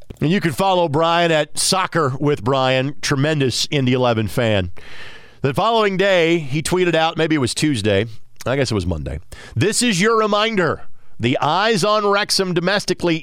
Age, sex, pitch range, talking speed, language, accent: 40-59, male, 130-170 Hz, 170 wpm, English, American